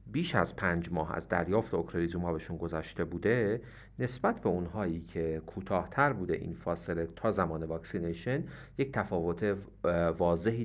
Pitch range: 85-110 Hz